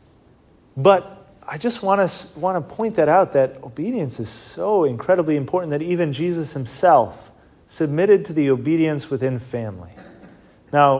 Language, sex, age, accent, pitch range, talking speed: English, male, 30-49, American, 135-170 Hz, 145 wpm